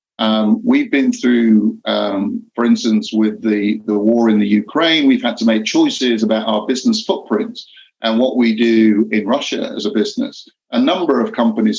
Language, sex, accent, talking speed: English, male, British, 185 wpm